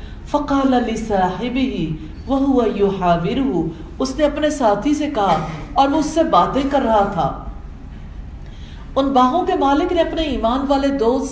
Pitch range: 185-270 Hz